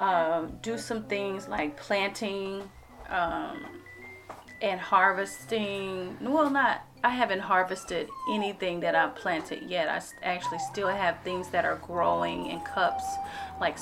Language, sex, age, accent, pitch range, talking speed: English, female, 30-49, American, 170-200 Hz, 135 wpm